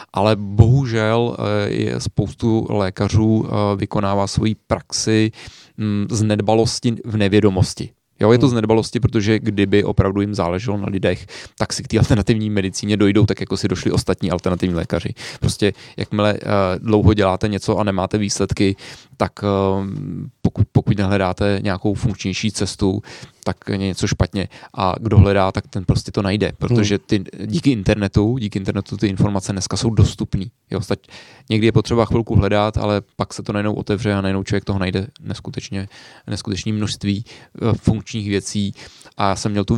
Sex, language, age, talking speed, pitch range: male, Czech, 20-39, 150 wpm, 100-110 Hz